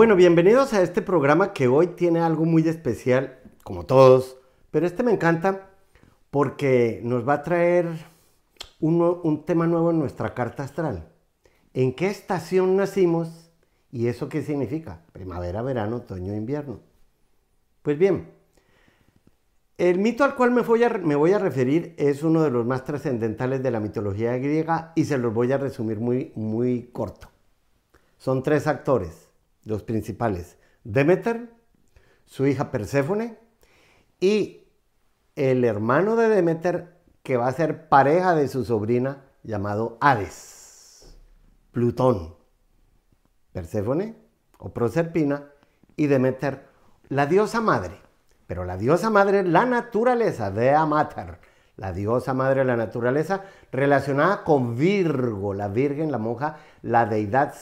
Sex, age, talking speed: male, 50-69, 135 wpm